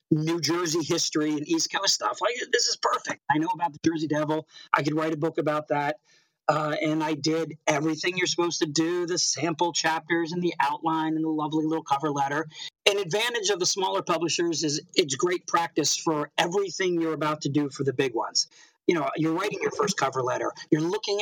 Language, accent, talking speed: English, American, 210 wpm